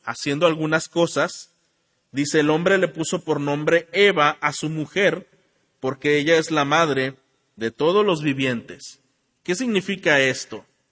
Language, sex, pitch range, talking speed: Spanish, male, 135-180 Hz, 145 wpm